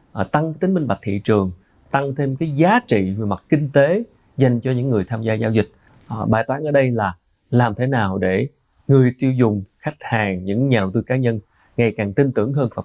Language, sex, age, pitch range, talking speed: Vietnamese, male, 20-39, 100-135 Hz, 230 wpm